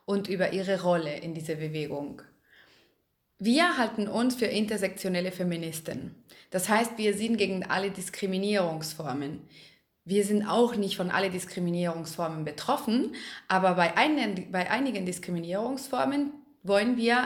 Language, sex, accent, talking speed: German, female, German, 120 wpm